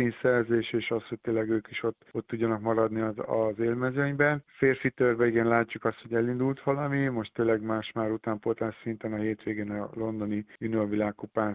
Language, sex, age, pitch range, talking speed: Hungarian, male, 50-69, 110-120 Hz, 165 wpm